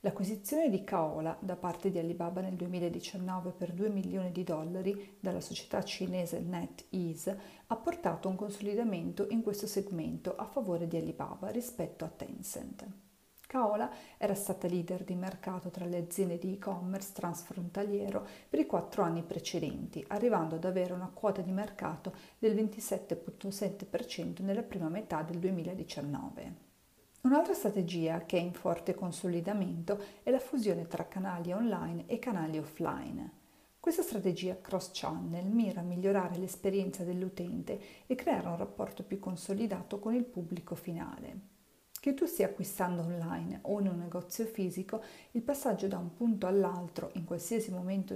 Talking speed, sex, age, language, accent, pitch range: 145 wpm, female, 40-59, Italian, native, 180-205 Hz